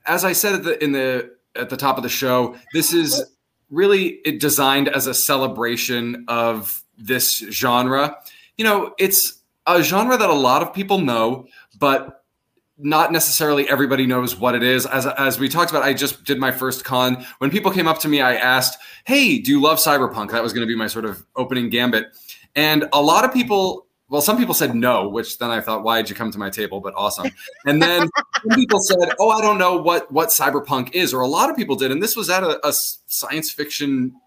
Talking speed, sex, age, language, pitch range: 220 wpm, male, 20-39, English, 125-165 Hz